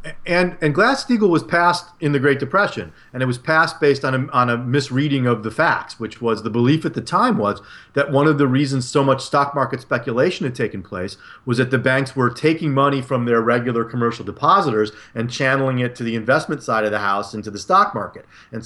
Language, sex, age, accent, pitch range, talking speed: English, male, 40-59, American, 120-155 Hz, 230 wpm